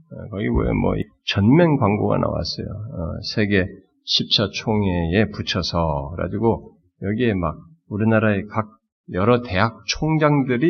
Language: Korean